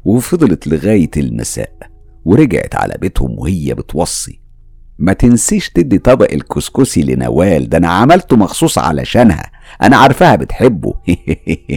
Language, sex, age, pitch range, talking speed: Arabic, male, 50-69, 75-115 Hz, 110 wpm